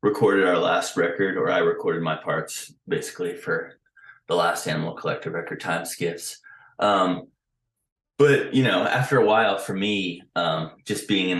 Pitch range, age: 80-110 Hz, 20-39